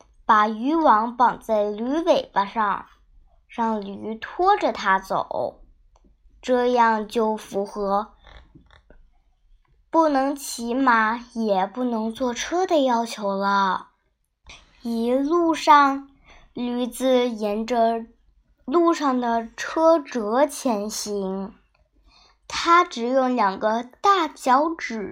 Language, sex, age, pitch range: Chinese, male, 10-29, 205-275 Hz